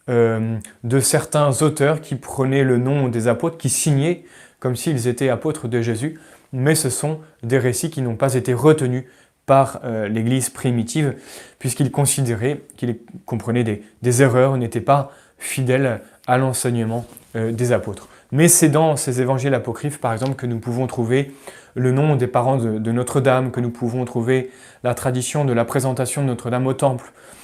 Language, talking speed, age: French, 175 wpm, 20-39